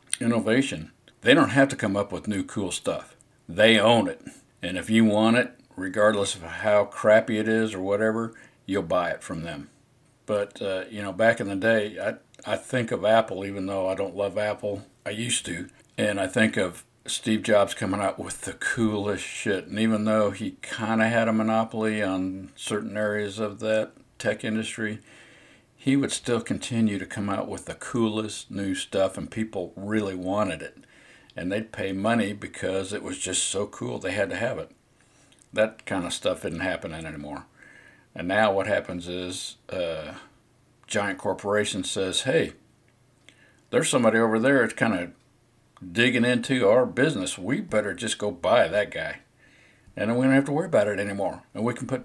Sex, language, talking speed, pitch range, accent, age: male, English, 190 wpm, 100-115 Hz, American, 50-69